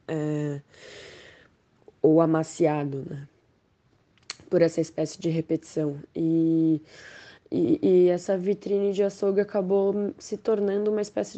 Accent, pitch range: Brazilian, 160-180 Hz